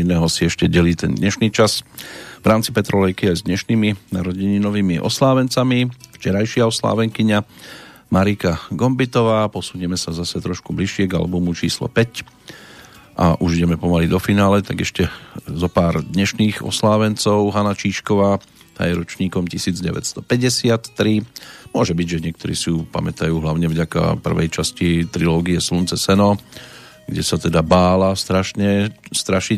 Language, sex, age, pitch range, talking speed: Slovak, male, 40-59, 85-110 Hz, 125 wpm